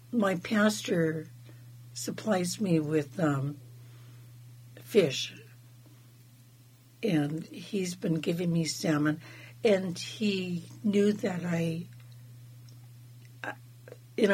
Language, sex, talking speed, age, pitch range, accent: English, female, 80 wpm, 60-79, 120-180 Hz, American